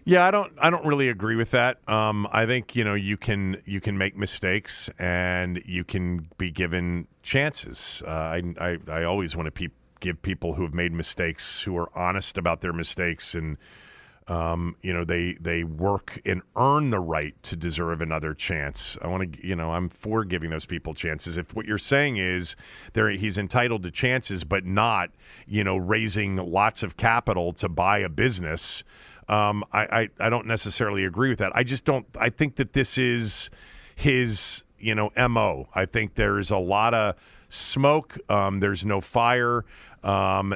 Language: English